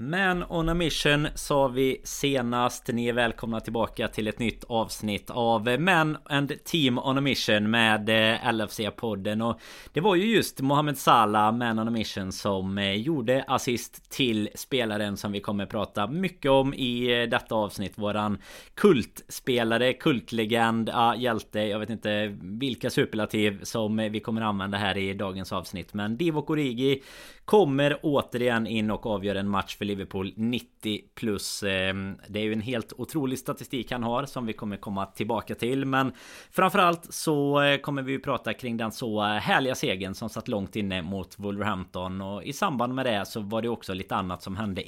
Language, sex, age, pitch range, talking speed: Swedish, male, 20-39, 105-130 Hz, 170 wpm